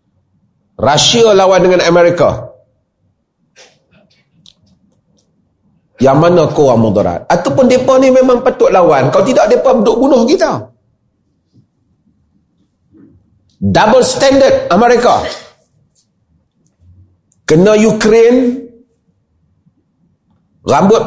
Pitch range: 160-250 Hz